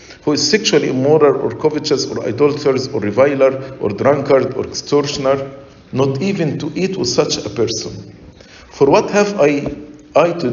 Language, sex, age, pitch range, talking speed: English, male, 50-69, 125-160 Hz, 160 wpm